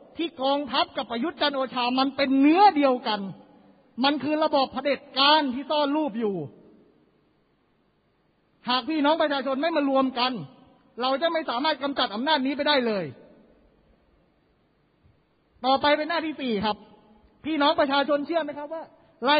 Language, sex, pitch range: Thai, male, 245-300 Hz